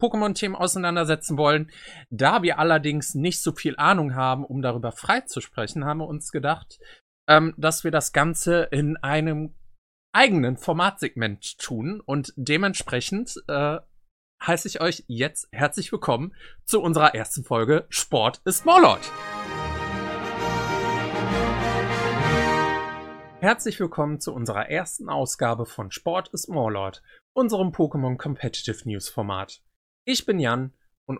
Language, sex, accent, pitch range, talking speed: German, male, German, 115-175 Hz, 125 wpm